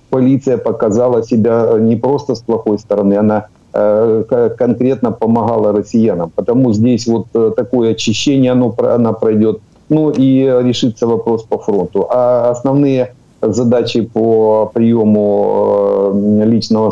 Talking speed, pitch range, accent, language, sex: 115 wpm, 110-125 Hz, native, Ukrainian, male